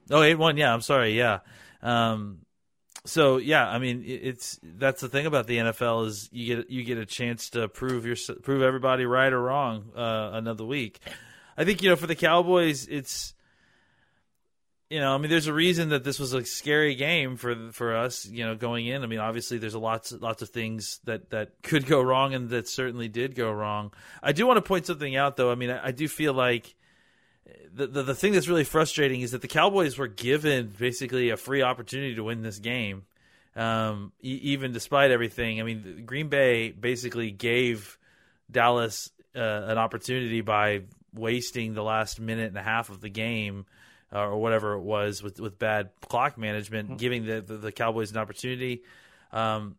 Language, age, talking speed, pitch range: English, 30-49, 200 wpm, 110-135 Hz